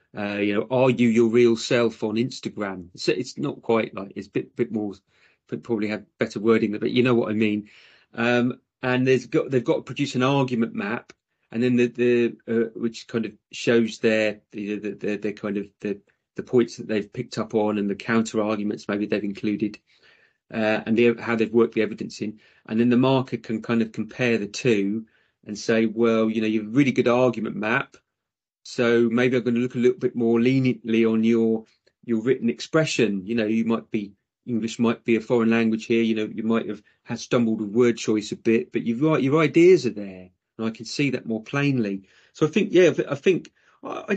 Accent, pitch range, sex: British, 110-125 Hz, male